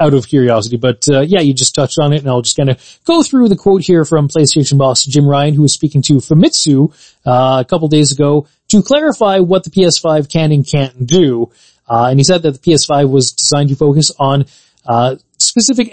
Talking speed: 220 wpm